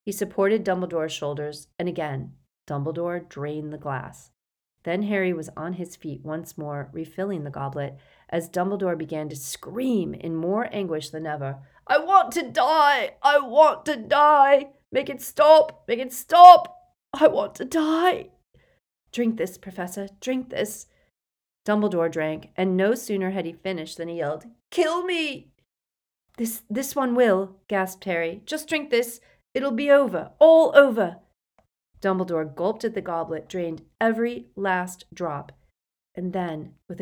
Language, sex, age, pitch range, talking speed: English, female, 40-59, 155-225 Hz, 150 wpm